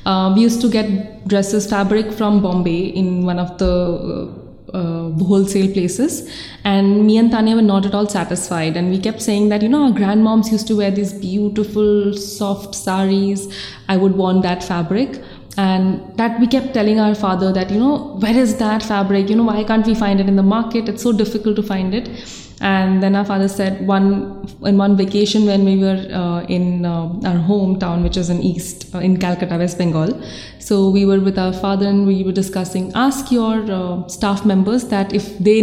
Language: English